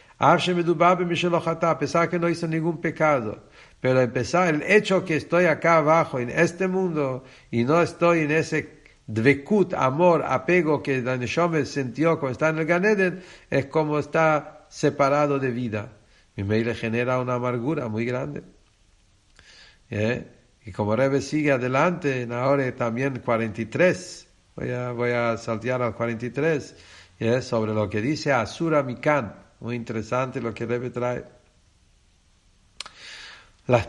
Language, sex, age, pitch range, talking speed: English, male, 60-79, 105-150 Hz, 140 wpm